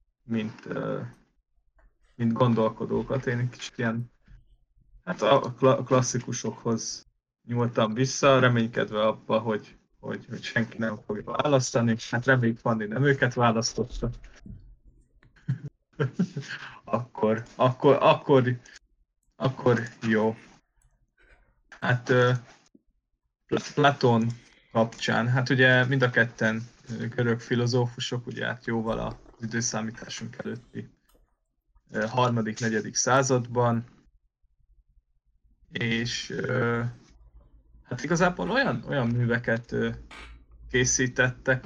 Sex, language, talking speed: male, Hungarian, 85 wpm